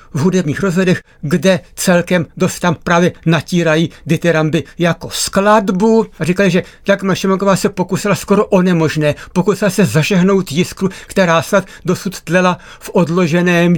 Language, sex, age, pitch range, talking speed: Czech, male, 60-79, 160-200 Hz, 145 wpm